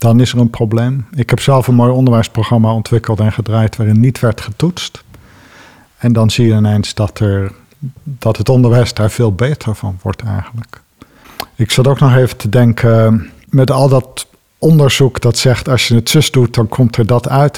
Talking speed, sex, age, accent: 195 wpm, male, 50-69, Dutch